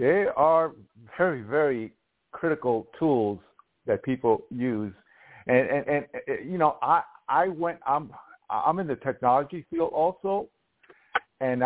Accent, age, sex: American, 50-69, male